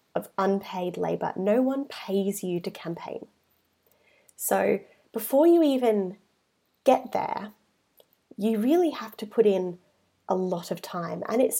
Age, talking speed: 20-39, 140 wpm